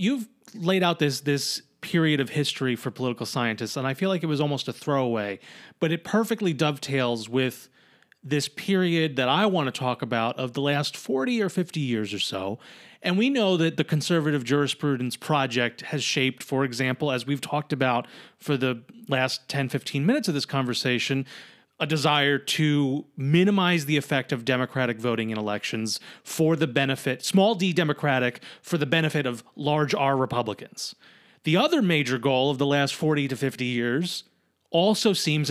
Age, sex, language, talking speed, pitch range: 30-49, male, English, 175 wpm, 130-165 Hz